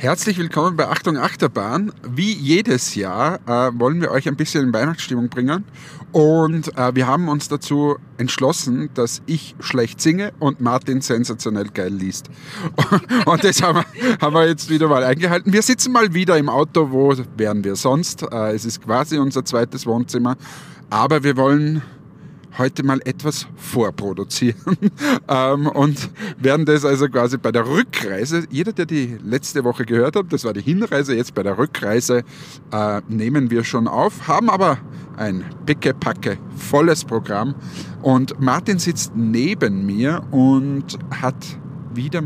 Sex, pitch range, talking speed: male, 125-160 Hz, 150 wpm